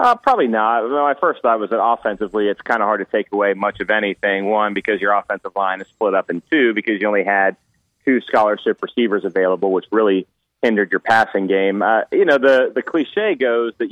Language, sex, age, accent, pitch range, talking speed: English, male, 30-49, American, 100-120 Hz, 220 wpm